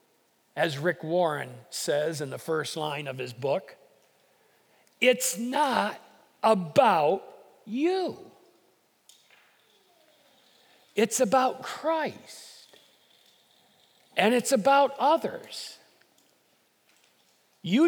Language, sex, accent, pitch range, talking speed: English, male, American, 195-280 Hz, 75 wpm